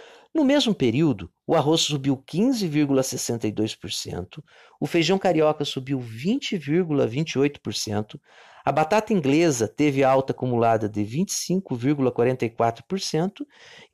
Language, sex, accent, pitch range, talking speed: Portuguese, male, Brazilian, 130-205 Hz, 85 wpm